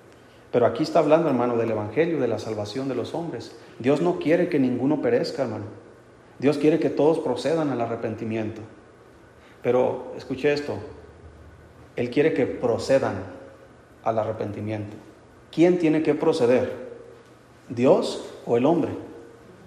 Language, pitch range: Spanish, 115-155 Hz